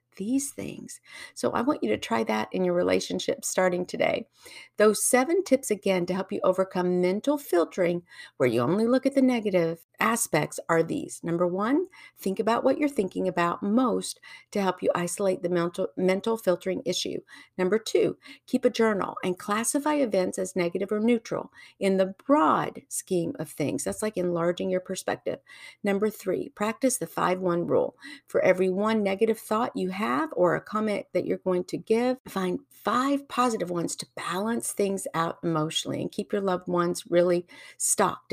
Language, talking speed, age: English, 175 wpm, 50-69